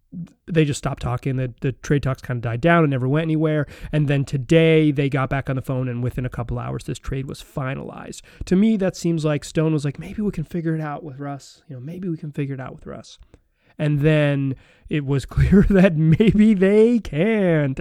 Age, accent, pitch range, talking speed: 30-49, American, 135-170 Hz, 235 wpm